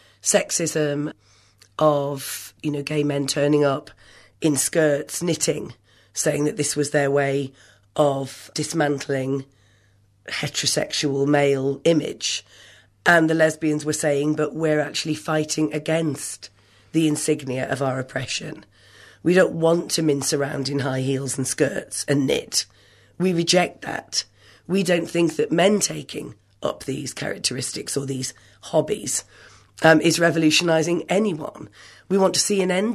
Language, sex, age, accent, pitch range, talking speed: English, female, 40-59, British, 130-160 Hz, 135 wpm